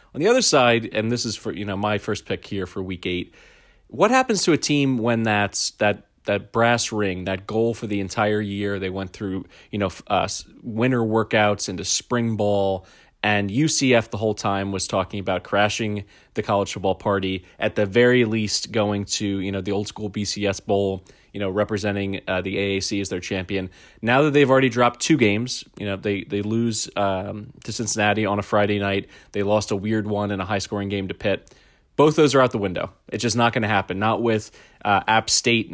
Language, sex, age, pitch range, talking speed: English, male, 30-49, 100-115 Hz, 215 wpm